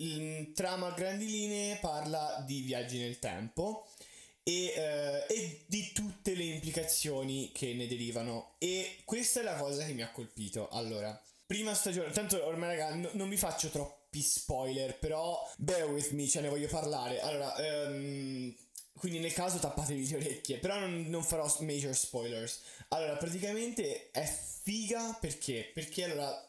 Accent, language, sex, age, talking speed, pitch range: native, Italian, male, 20-39, 160 wpm, 135-175 Hz